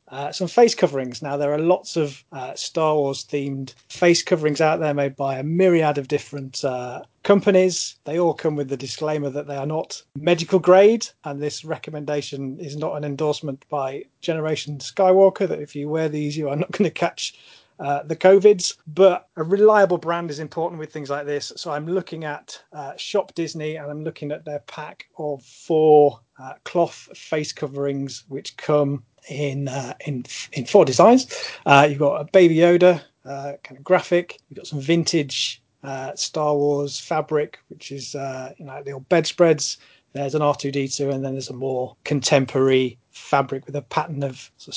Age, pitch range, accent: 30-49, 140-165 Hz, British